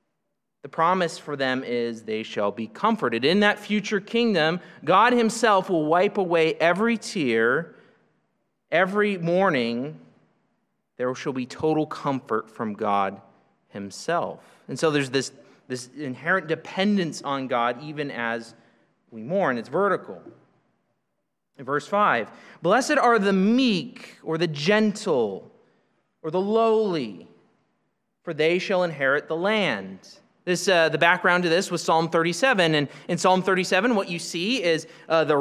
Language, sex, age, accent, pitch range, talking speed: English, male, 30-49, American, 155-215 Hz, 140 wpm